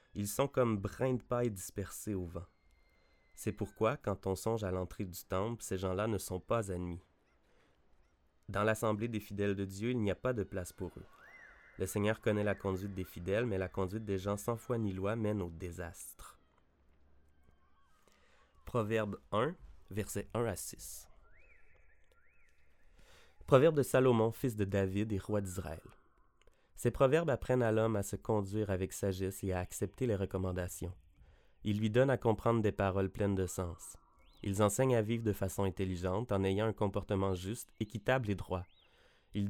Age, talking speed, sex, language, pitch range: 30-49, 170 wpm, male, French, 90-110 Hz